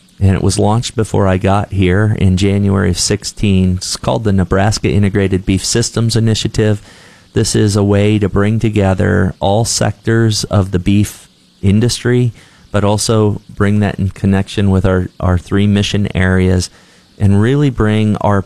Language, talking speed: English, 160 wpm